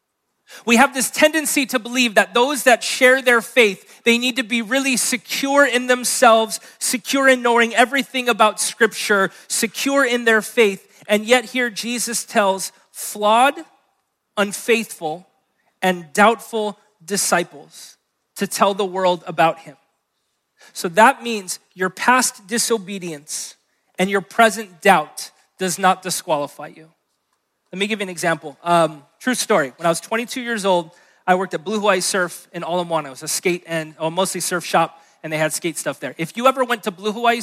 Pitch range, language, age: 170-230 Hz, English, 30-49